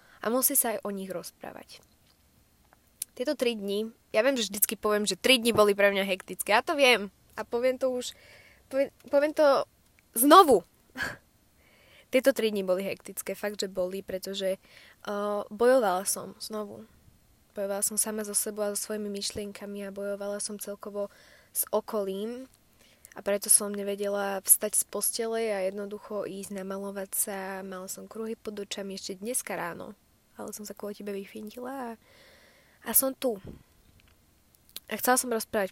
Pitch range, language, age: 200-230 Hz, Slovak, 20-39